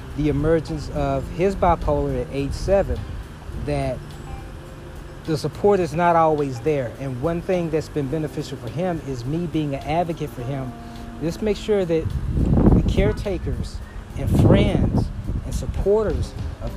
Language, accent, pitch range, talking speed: English, American, 115-165 Hz, 145 wpm